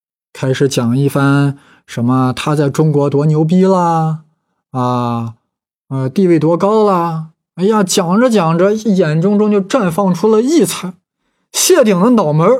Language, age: Chinese, 20-39